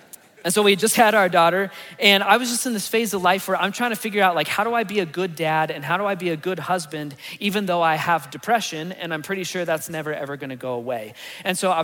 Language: English